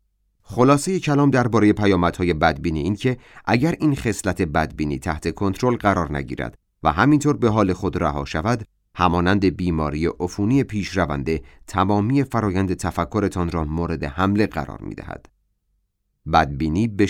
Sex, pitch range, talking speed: male, 80-110 Hz, 130 wpm